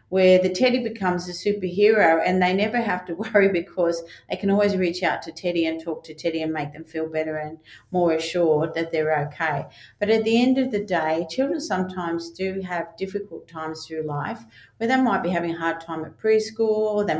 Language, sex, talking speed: English, female, 215 wpm